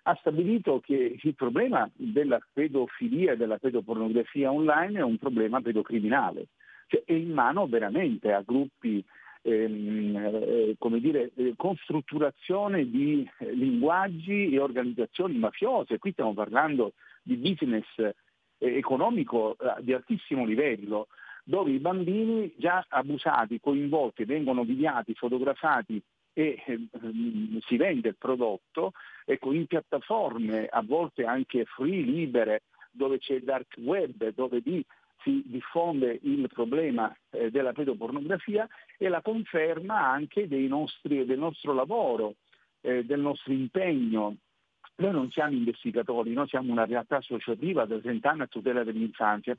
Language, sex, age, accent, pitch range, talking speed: Italian, male, 50-69, native, 120-170 Hz, 130 wpm